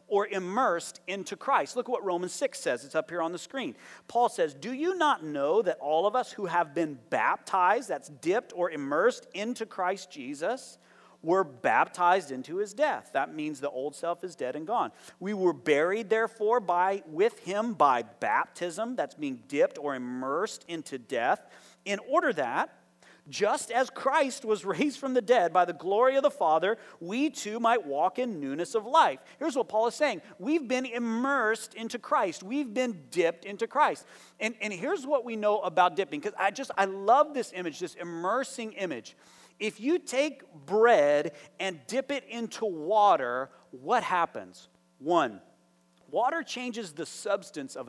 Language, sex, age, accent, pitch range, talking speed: English, male, 40-59, American, 170-255 Hz, 180 wpm